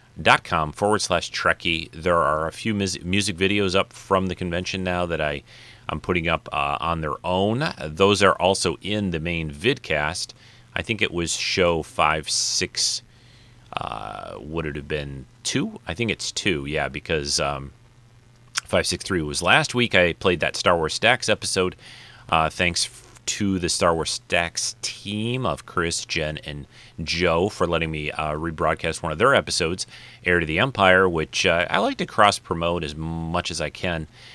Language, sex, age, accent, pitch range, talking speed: English, male, 30-49, American, 80-105 Hz, 180 wpm